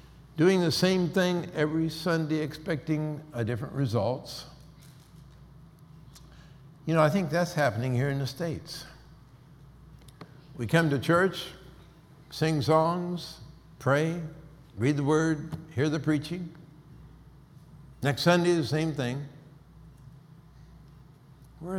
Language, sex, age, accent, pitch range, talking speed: English, male, 60-79, American, 115-155 Hz, 105 wpm